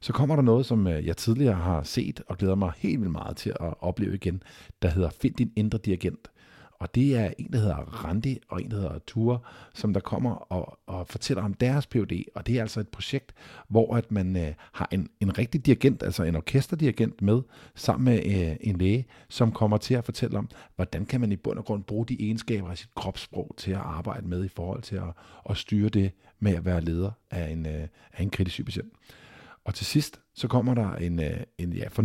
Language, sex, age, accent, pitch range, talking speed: Danish, male, 50-69, native, 90-115 Hz, 220 wpm